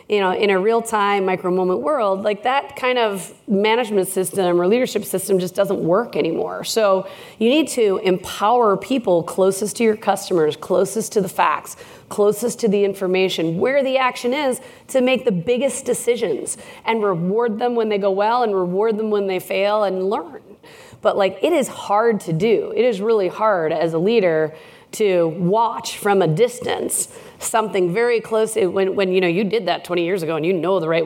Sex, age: female, 30-49